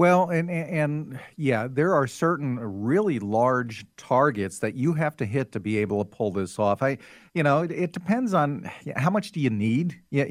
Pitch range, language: 115-150 Hz, English